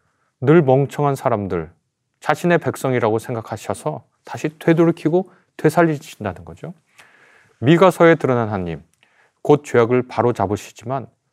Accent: native